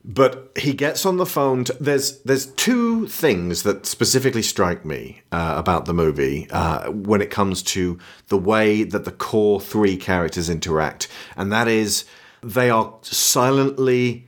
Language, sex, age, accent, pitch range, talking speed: English, male, 40-59, British, 90-115 Hz, 160 wpm